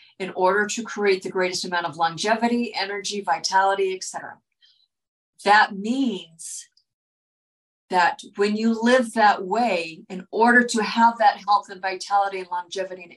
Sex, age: female, 50-69